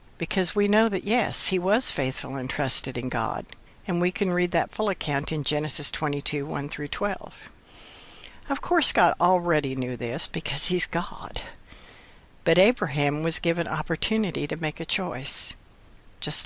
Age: 60-79